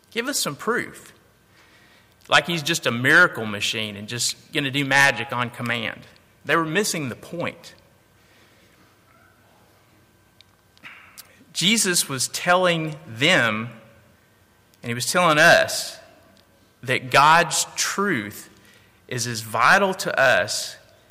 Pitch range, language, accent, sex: 110-150 Hz, English, American, male